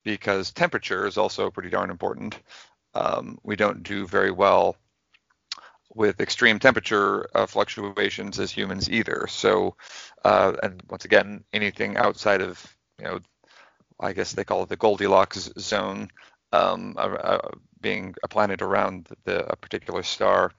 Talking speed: 140 wpm